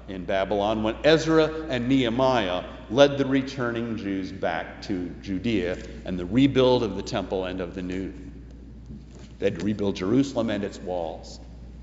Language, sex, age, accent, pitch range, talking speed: English, male, 50-69, American, 100-155 Hz, 150 wpm